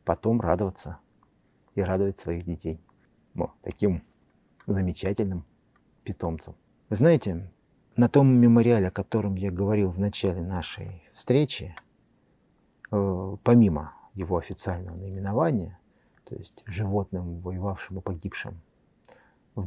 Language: Russian